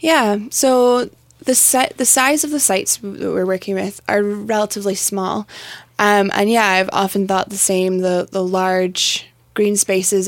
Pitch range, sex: 185-205 Hz, female